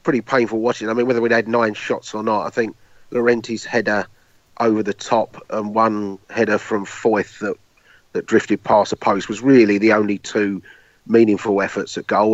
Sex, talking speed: male, 190 wpm